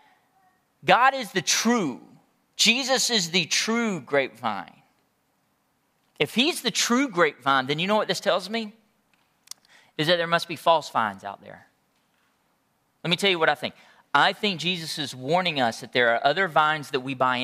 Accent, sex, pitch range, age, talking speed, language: American, male, 165-235 Hz, 40-59, 175 wpm, English